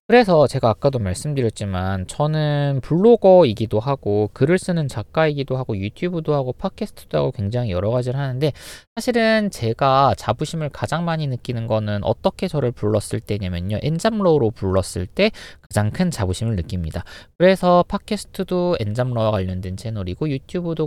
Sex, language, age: male, Korean, 20-39